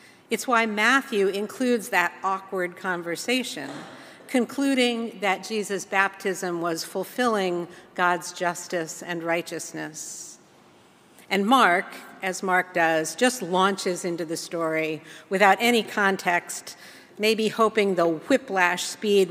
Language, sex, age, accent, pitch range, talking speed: English, female, 50-69, American, 175-220 Hz, 110 wpm